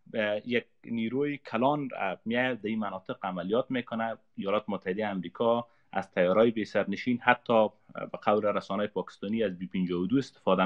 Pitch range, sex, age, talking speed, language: 110-145 Hz, male, 30-49, 135 wpm, Persian